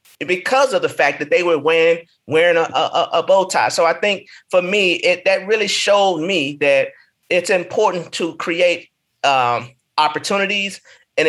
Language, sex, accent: English, male, American